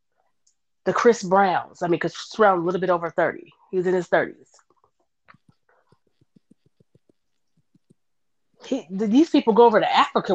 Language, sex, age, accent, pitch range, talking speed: English, female, 30-49, American, 195-265 Hz, 135 wpm